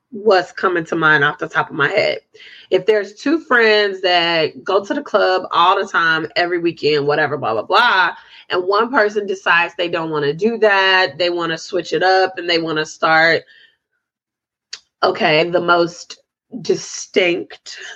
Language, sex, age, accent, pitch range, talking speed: English, female, 20-39, American, 185-265 Hz, 175 wpm